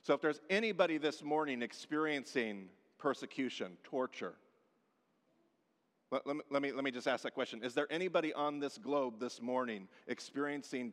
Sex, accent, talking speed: male, American, 145 wpm